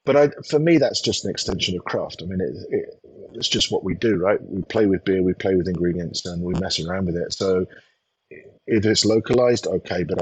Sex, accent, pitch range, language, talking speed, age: male, British, 90-120 Hz, English, 235 wpm, 30-49